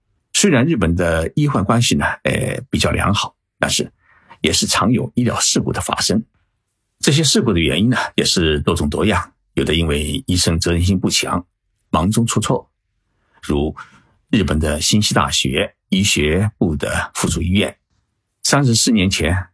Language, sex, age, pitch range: Chinese, male, 50-69, 85-110 Hz